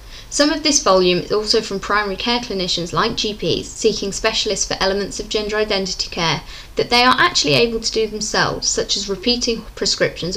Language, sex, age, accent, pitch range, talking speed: English, female, 20-39, British, 195-235 Hz, 185 wpm